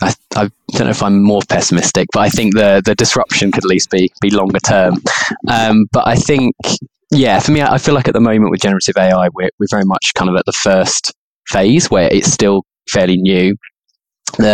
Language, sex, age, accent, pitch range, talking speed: English, male, 20-39, British, 90-105 Hz, 220 wpm